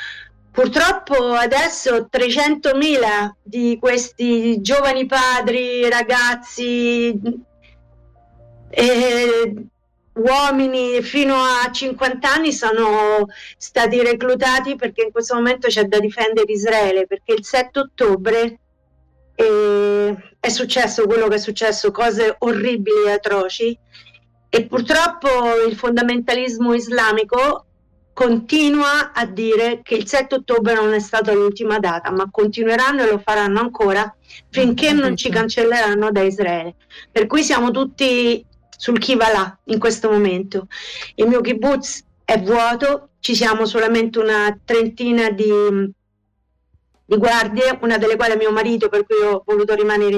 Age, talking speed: 50-69, 120 wpm